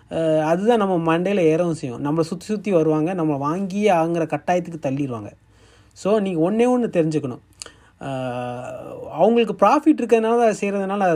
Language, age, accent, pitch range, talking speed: Tamil, 30-49, native, 150-195 Hz, 130 wpm